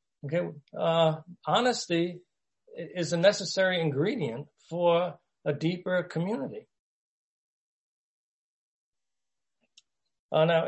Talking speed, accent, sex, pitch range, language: 75 wpm, American, male, 145-175 Hz, English